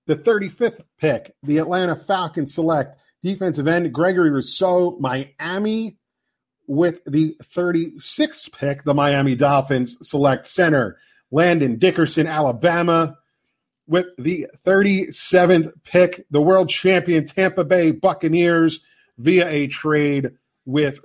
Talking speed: 110 wpm